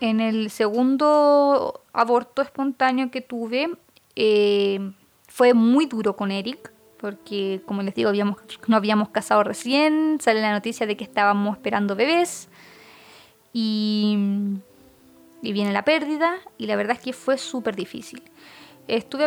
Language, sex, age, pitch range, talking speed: Spanish, female, 20-39, 215-275 Hz, 135 wpm